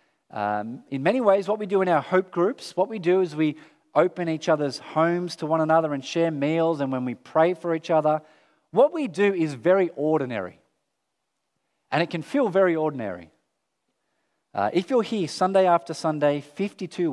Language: English